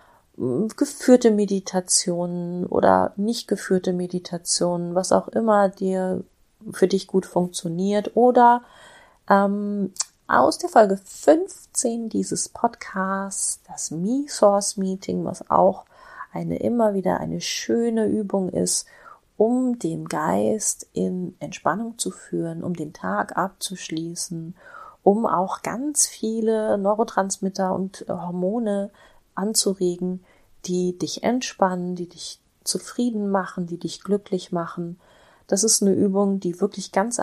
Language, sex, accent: German, female, German